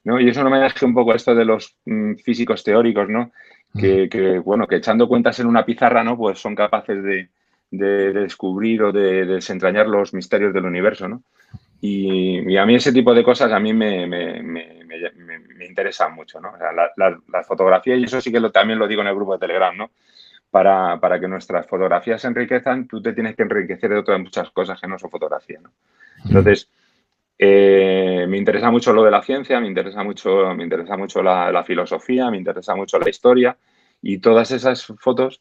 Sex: male